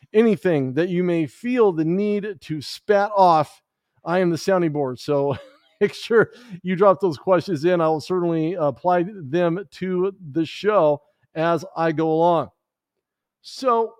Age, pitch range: 50-69, 160-195 Hz